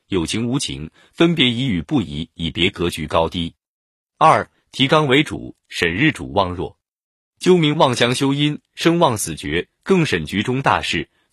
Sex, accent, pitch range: male, native, 95-150 Hz